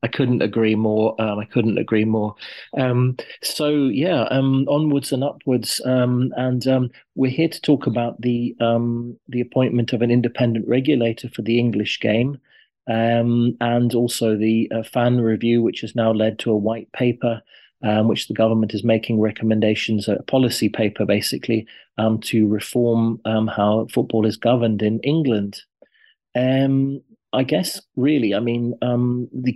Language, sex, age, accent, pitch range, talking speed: English, male, 30-49, British, 110-120 Hz, 160 wpm